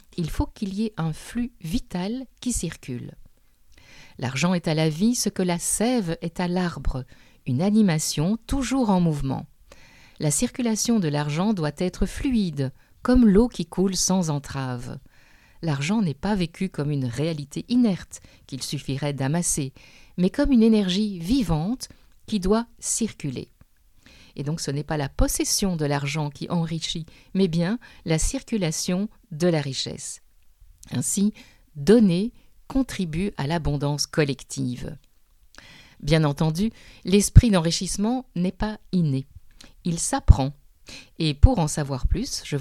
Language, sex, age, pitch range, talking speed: French, female, 50-69, 145-215 Hz, 140 wpm